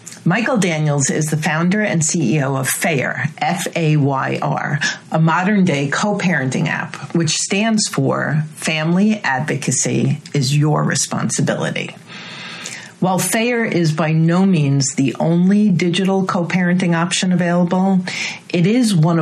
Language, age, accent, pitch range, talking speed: English, 40-59, American, 155-185 Hz, 120 wpm